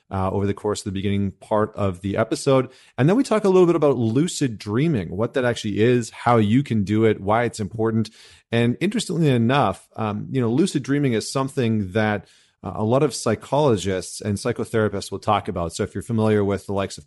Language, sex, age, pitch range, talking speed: English, male, 30-49, 100-120 Hz, 220 wpm